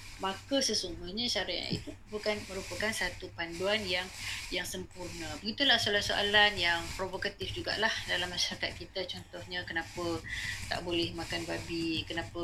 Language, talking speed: Malay, 130 wpm